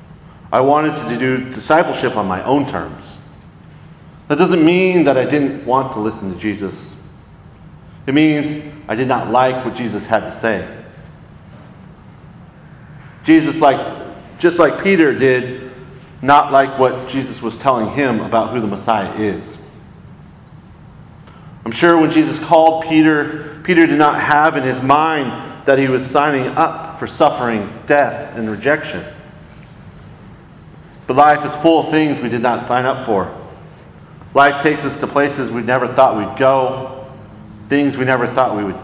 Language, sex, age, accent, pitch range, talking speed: English, male, 40-59, American, 120-150 Hz, 155 wpm